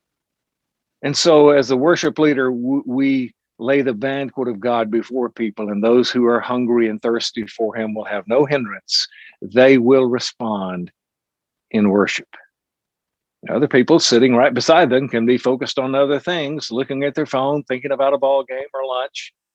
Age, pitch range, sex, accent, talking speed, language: 50-69, 115-145 Hz, male, American, 170 wpm, English